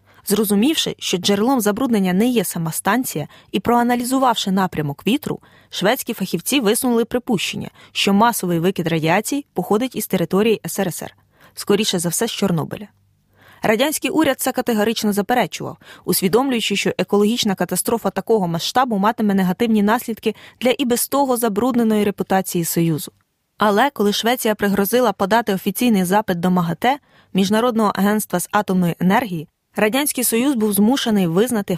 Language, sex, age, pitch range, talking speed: Ukrainian, female, 20-39, 190-240 Hz, 130 wpm